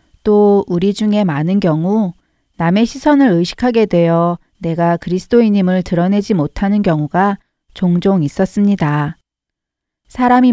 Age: 40-59